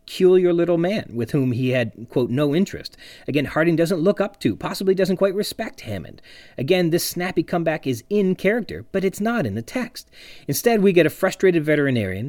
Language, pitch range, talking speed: English, 115-155 Hz, 195 wpm